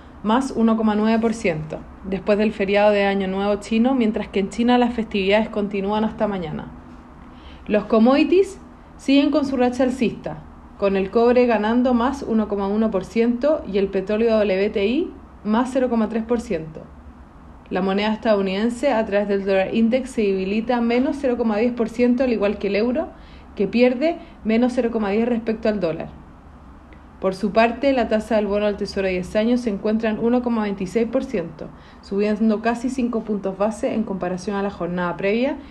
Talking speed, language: 150 wpm, Spanish